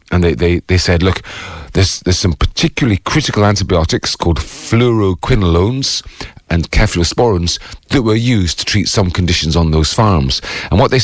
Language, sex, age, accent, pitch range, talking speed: English, male, 40-59, British, 80-105 Hz, 150 wpm